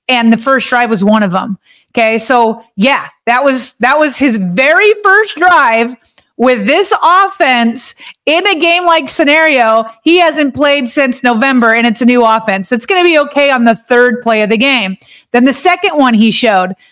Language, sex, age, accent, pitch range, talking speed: English, female, 30-49, American, 225-275 Hz, 195 wpm